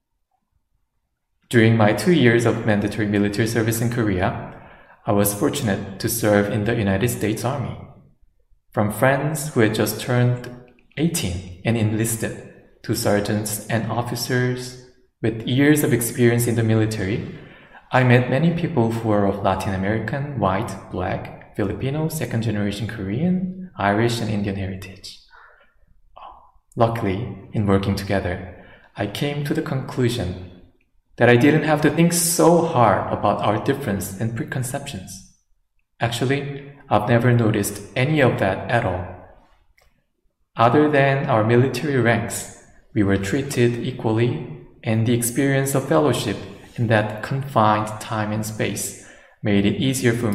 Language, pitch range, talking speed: English, 100-130 Hz, 135 wpm